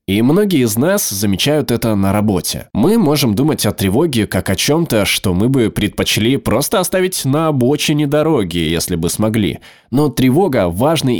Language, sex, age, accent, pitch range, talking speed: Russian, male, 20-39, native, 100-145 Hz, 165 wpm